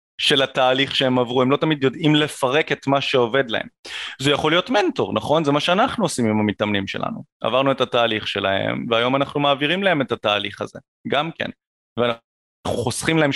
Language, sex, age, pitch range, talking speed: Hebrew, male, 30-49, 125-160 Hz, 180 wpm